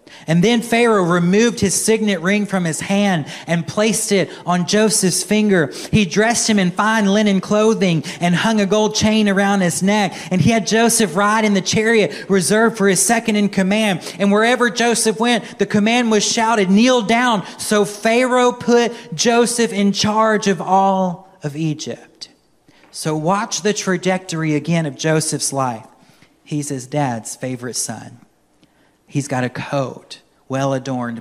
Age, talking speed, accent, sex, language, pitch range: 30-49, 160 wpm, American, male, English, 140-210 Hz